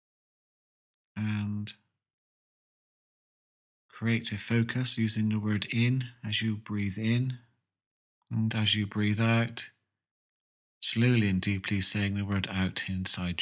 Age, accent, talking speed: 40-59, British, 110 wpm